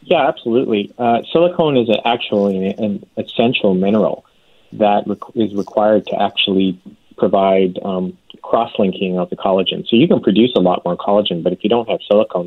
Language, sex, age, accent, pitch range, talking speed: English, male, 30-49, American, 95-110 Hz, 170 wpm